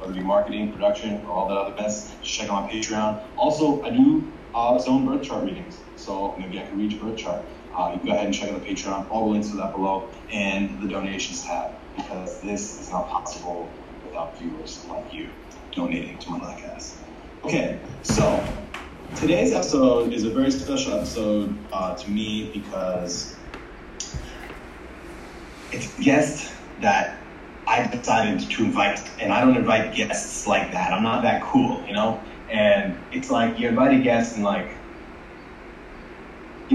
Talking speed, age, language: 175 wpm, 30-49, English